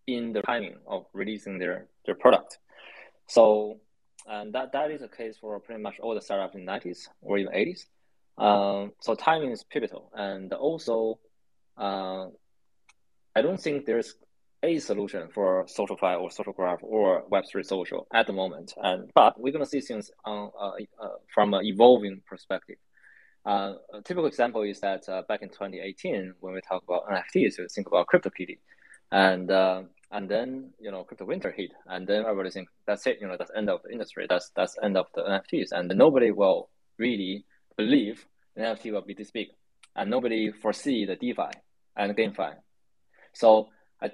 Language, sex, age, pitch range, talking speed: English, male, 20-39, 95-110 Hz, 185 wpm